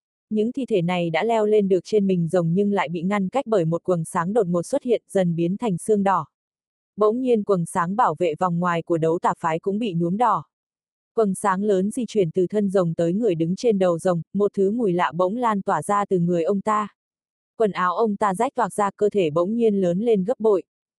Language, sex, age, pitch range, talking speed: Vietnamese, female, 20-39, 180-220 Hz, 245 wpm